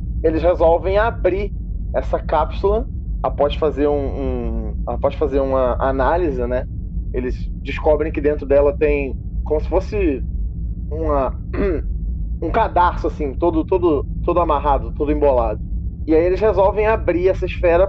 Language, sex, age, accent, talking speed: Portuguese, male, 20-39, Brazilian, 135 wpm